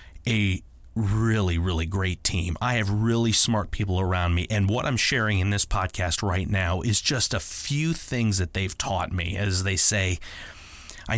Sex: male